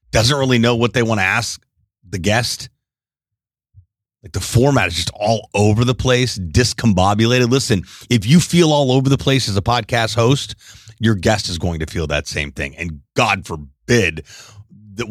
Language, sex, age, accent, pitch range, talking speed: English, male, 30-49, American, 95-120 Hz, 180 wpm